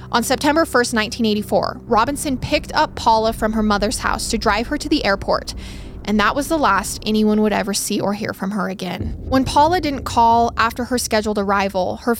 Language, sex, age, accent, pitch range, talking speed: English, female, 20-39, American, 210-275 Hz, 200 wpm